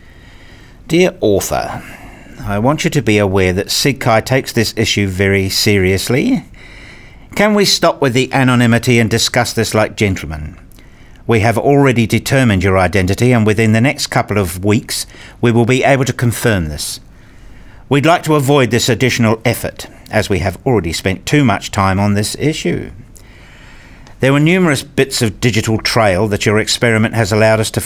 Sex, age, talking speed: male, 50-69, 170 wpm